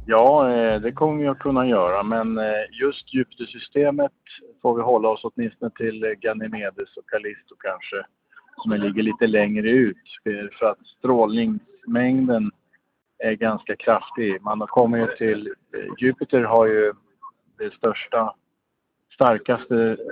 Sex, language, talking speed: male, Swedish, 120 wpm